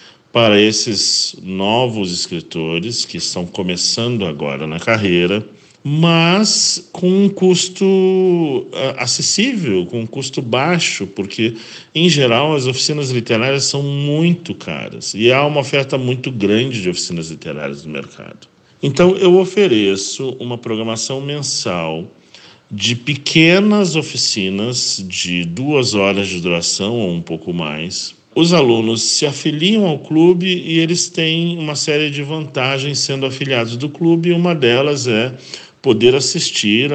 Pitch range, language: 100-155 Hz, Portuguese